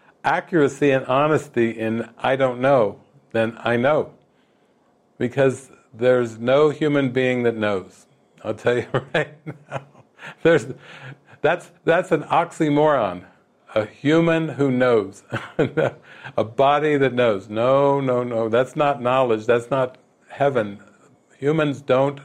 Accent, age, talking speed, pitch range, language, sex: American, 50-69, 125 wpm, 125-150 Hz, English, male